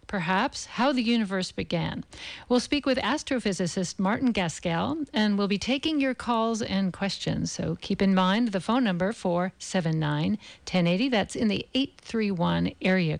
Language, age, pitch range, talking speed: English, 50-69, 180-225 Hz, 145 wpm